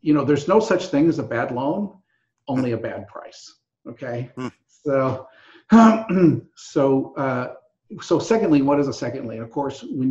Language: English